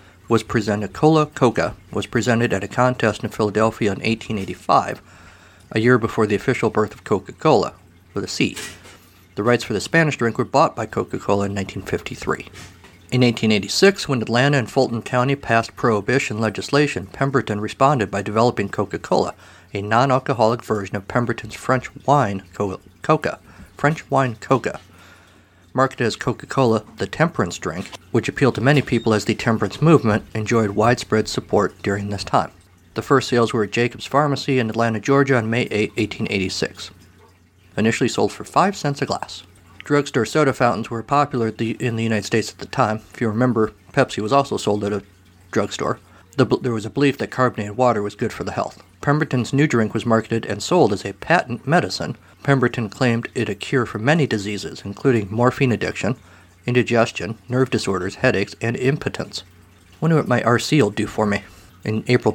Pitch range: 100-130 Hz